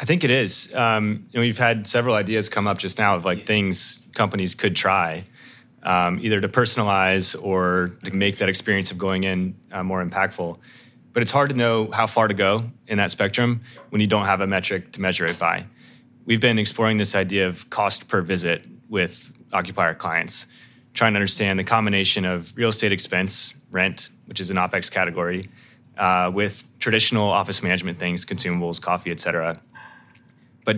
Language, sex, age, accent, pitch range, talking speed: English, male, 30-49, American, 95-110 Hz, 180 wpm